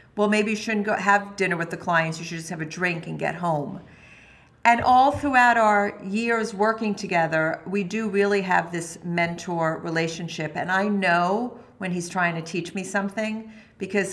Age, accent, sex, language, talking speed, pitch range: 50-69, American, female, English, 185 wpm, 165-210 Hz